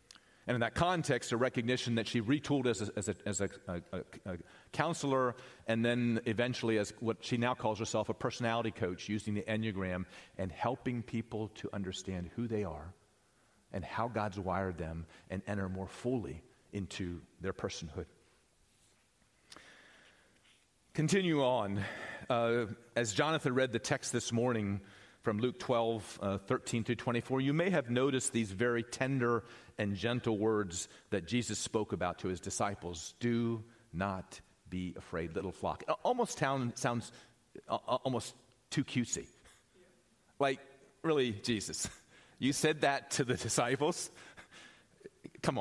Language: English